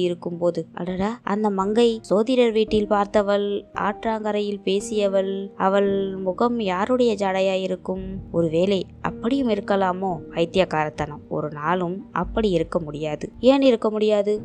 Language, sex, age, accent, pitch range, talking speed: Tamil, female, 20-39, native, 175-210 Hz, 90 wpm